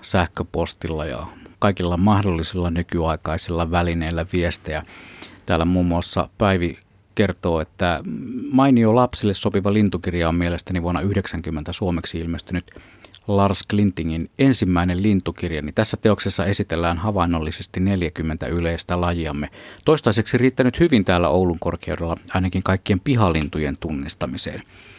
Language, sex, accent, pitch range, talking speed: Finnish, male, native, 85-105 Hz, 105 wpm